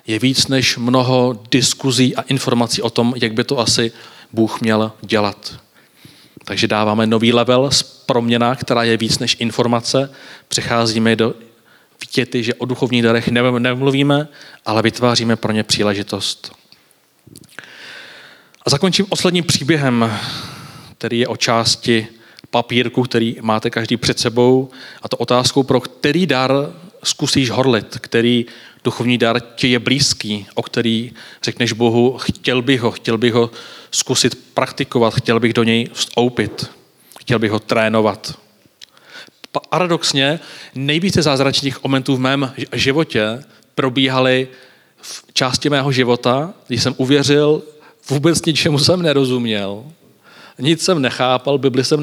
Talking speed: 130 wpm